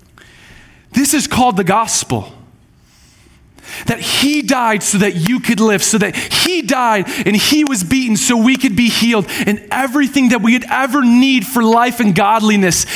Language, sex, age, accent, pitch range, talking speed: English, male, 30-49, American, 195-260 Hz, 170 wpm